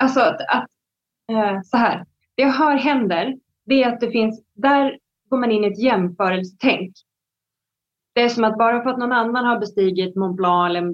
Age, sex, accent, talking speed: 30-49, female, native, 190 wpm